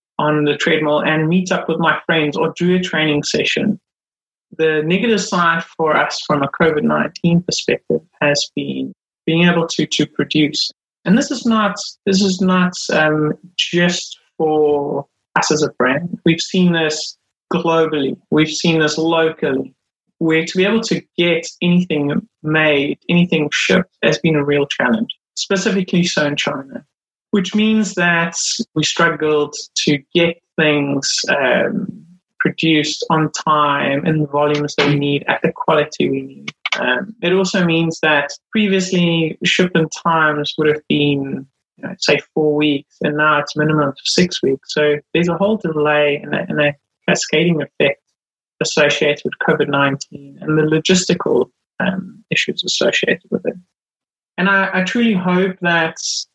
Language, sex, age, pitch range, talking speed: English, male, 30-49, 150-180 Hz, 150 wpm